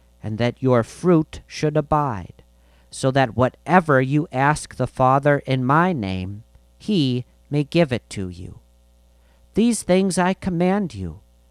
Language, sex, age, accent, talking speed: English, male, 40-59, American, 140 wpm